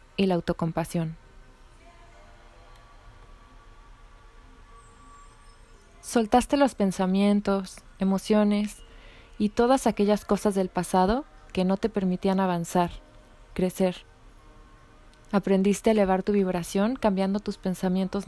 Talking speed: 90 wpm